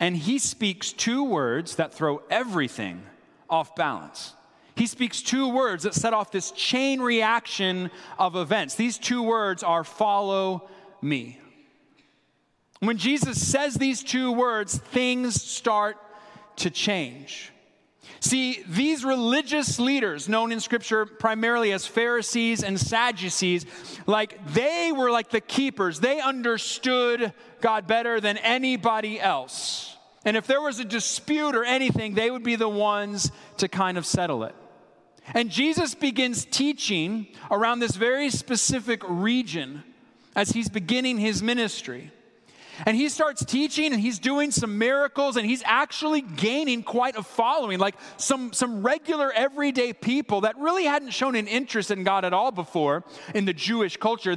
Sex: male